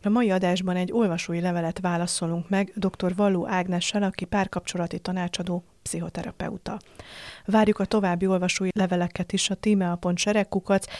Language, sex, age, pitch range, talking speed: Hungarian, female, 30-49, 175-200 Hz, 125 wpm